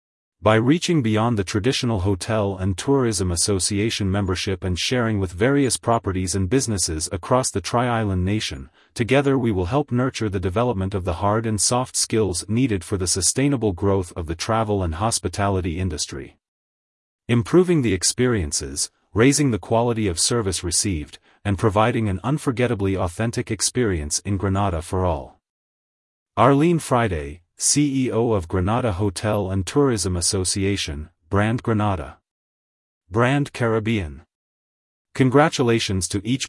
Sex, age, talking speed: male, 30-49, 130 wpm